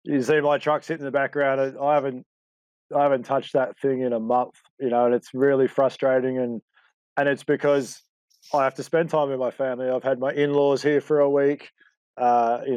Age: 20-39